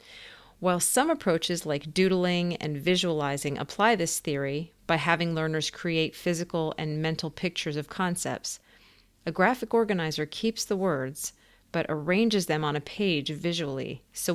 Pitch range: 150-180 Hz